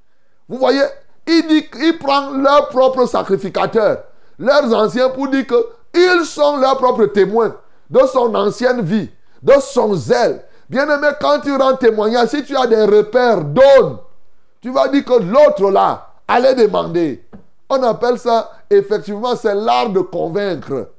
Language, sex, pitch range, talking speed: French, male, 175-255 Hz, 145 wpm